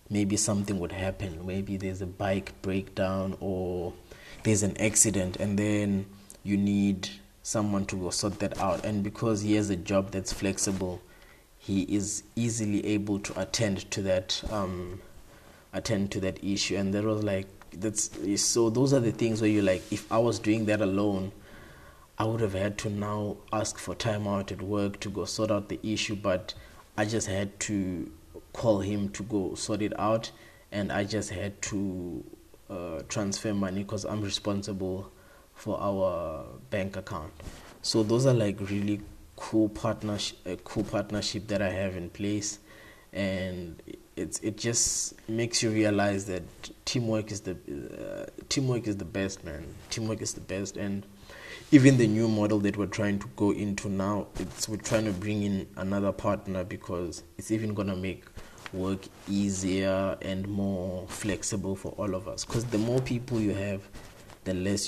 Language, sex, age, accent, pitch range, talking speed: English, male, 20-39, South African, 95-105 Hz, 175 wpm